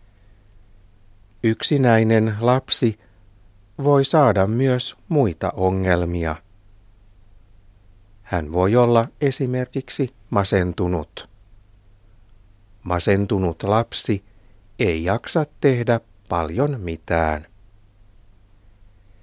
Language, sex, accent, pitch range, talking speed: Finnish, male, native, 100-115 Hz, 60 wpm